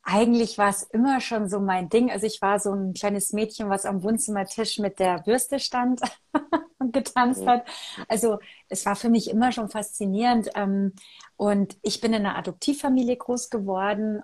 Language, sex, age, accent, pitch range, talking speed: German, female, 30-49, German, 195-240 Hz, 175 wpm